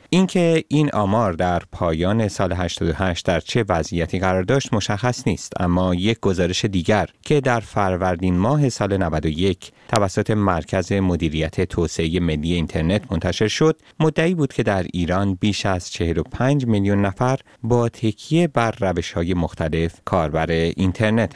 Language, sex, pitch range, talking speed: Persian, male, 90-125 Hz, 140 wpm